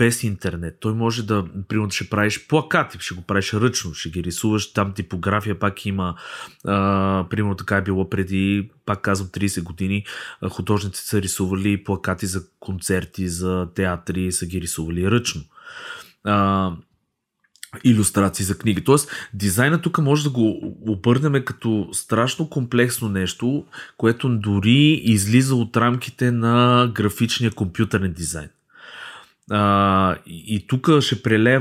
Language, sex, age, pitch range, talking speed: Bulgarian, male, 20-39, 95-115 Hz, 135 wpm